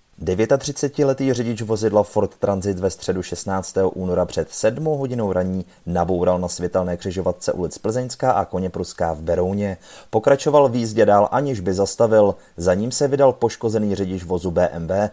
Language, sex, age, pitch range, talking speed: Czech, male, 30-49, 90-115 Hz, 150 wpm